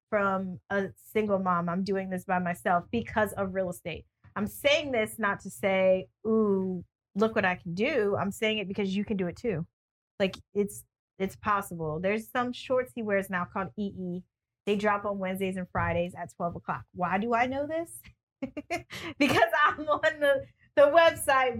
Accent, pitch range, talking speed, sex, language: American, 185-240 Hz, 185 wpm, female, English